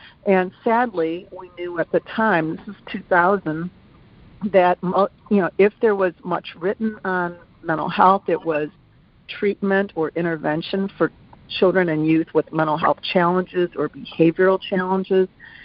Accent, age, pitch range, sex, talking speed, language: American, 50-69, 165-195 Hz, female, 140 wpm, English